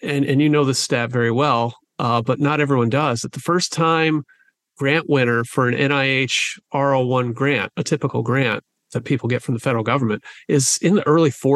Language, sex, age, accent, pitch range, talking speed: English, male, 40-59, American, 125-170 Hz, 195 wpm